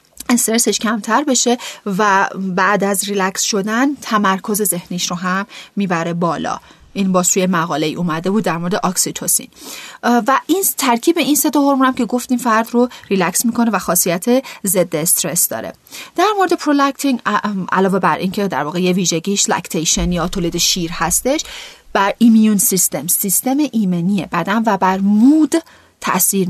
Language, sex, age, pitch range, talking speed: Persian, female, 30-49, 180-245 Hz, 150 wpm